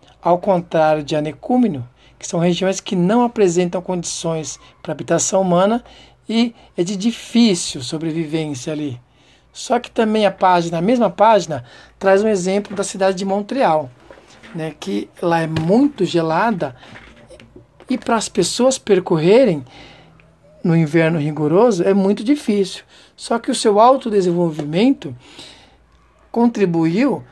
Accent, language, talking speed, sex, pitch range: Brazilian, Portuguese, 125 wpm, male, 165-230 Hz